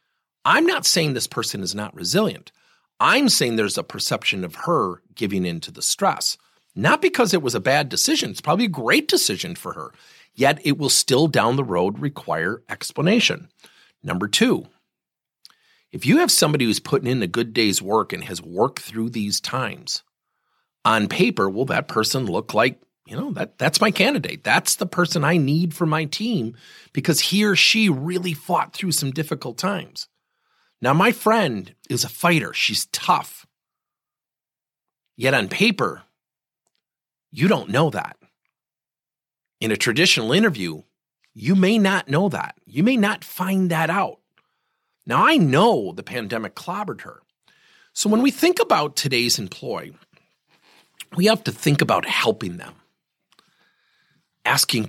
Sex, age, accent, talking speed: male, 40-59, American, 160 wpm